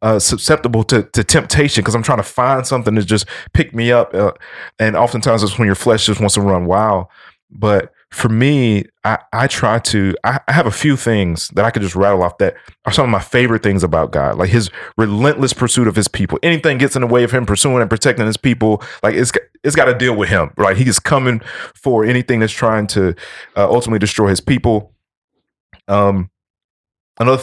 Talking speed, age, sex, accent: 215 wpm, 30-49, male, American